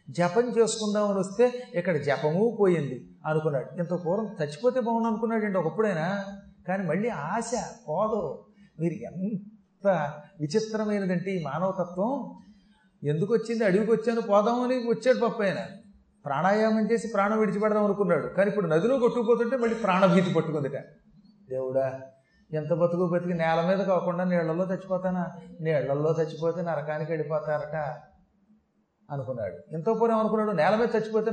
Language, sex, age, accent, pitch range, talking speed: Telugu, male, 30-49, native, 165-210 Hz, 125 wpm